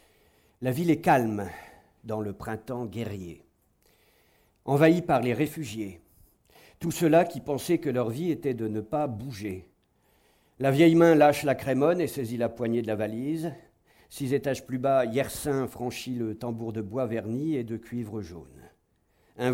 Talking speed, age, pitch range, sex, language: 165 wpm, 50-69, 110-150 Hz, male, French